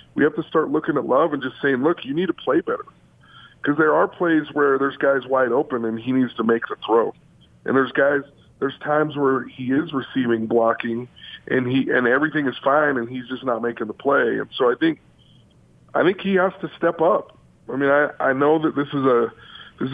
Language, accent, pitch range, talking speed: English, American, 125-150 Hz, 230 wpm